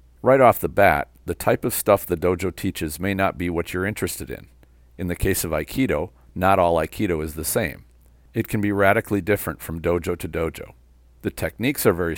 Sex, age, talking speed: male, 50-69, 205 wpm